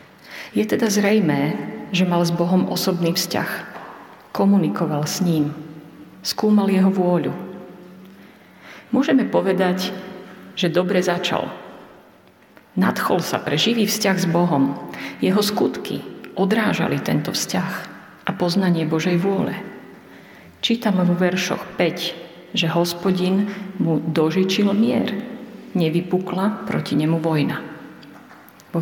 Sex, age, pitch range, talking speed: female, 50-69, 165-200 Hz, 105 wpm